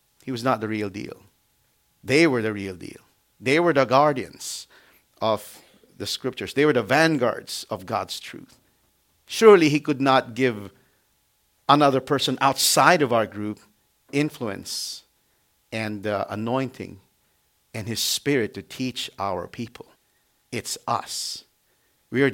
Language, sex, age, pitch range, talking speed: English, male, 50-69, 120-160 Hz, 135 wpm